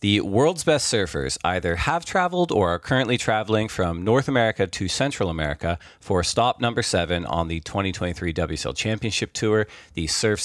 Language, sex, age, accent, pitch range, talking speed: English, male, 40-59, American, 85-110 Hz, 165 wpm